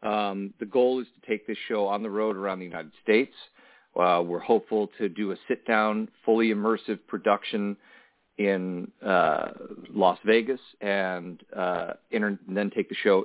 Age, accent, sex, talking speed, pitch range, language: 40-59, American, male, 170 wpm, 100-120 Hz, English